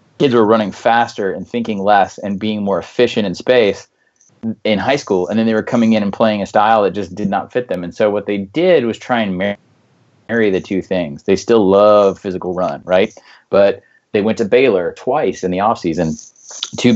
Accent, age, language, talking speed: American, 30-49, English, 215 wpm